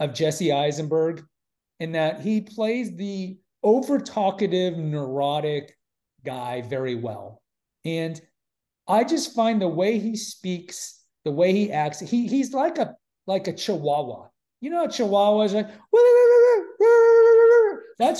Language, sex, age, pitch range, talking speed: English, male, 30-49, 150-210 Hz, 145 wpm